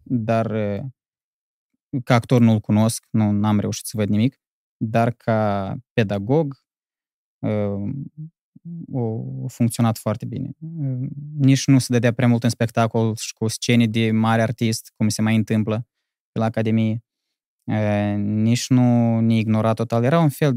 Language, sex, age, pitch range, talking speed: Romanian, male, 20-39, 110-130 Hz, 135 wpm